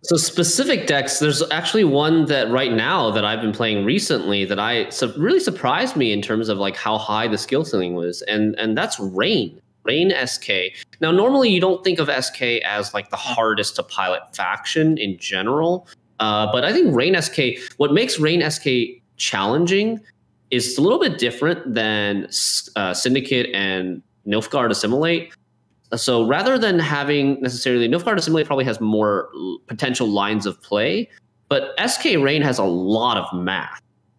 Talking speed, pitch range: 170 wpm, 110-160 Hz